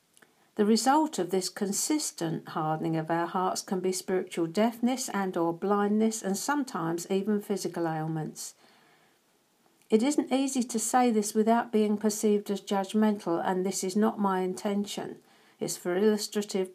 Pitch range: 175-220 Hz